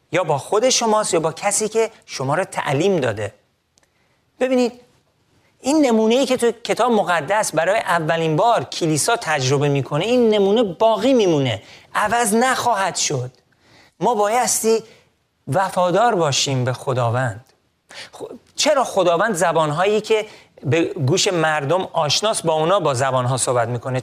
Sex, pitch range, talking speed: male, 160-225 Hz, 130 wpm